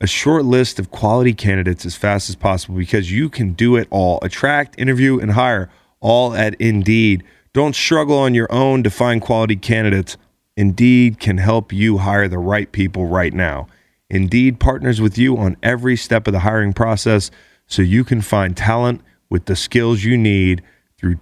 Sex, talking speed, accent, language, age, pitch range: male, 180 wpm, American, English, 30-49, 95-120 Hz